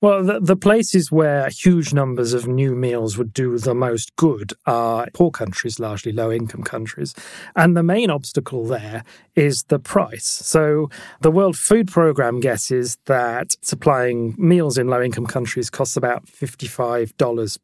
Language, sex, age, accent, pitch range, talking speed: English, male, 40-59, British, 120-160 Hz, 150 wpm